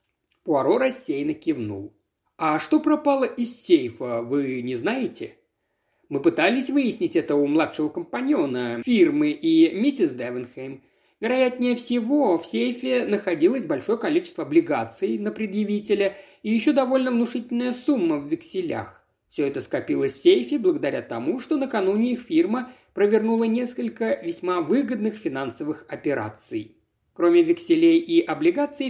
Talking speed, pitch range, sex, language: 125 wpm, 195-320 Hz, male, Russian